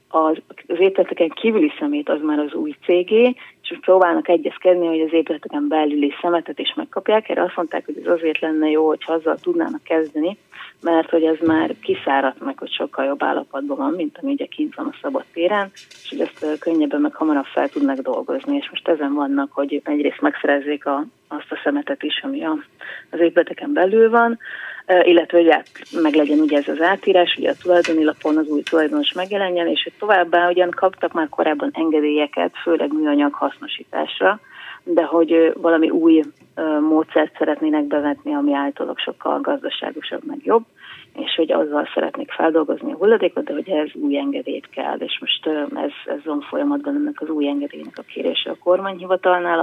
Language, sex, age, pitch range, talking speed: Hungarian, female, 30-49, 155-230 Hz, 170 wpm